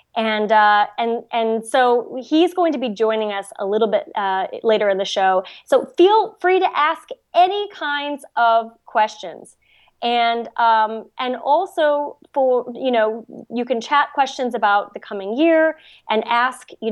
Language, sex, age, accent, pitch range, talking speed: English, female, 20-39, American, 205-270 Hz, 165 wpm